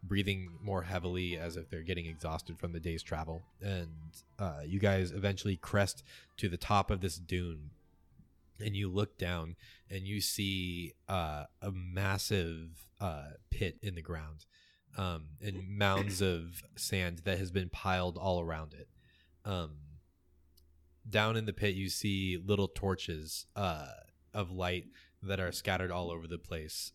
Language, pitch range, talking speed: English, 80-100 Hz, 155 wpm